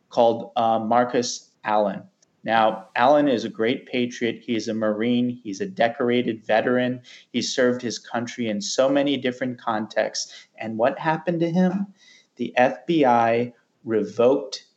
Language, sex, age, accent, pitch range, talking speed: English, male, 30-49, American, 120-160 Hz, 140 wpm